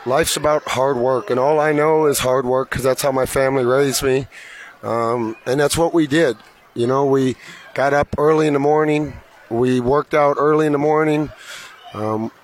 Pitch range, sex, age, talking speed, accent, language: 125-145 Hz, male, 30-49, 200 wpm, American, English